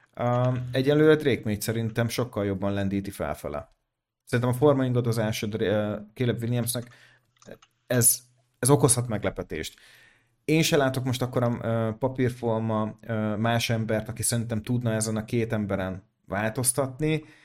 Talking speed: 125 wpm